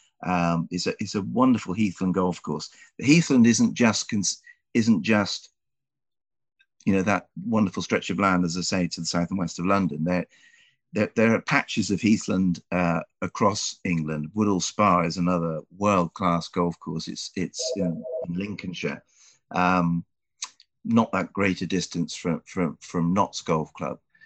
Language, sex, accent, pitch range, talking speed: English, male, British, 85-105 Hz, 165 wpm